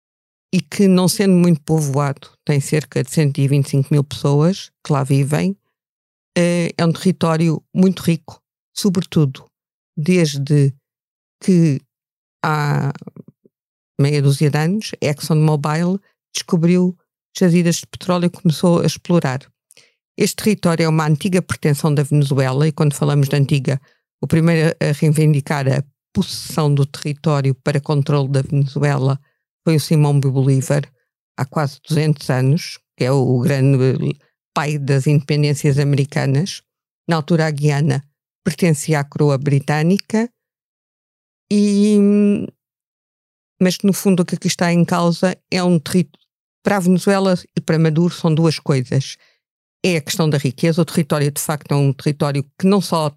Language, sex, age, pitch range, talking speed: Portuguese, female, 50-69, 145-175 Hz, 140 wpm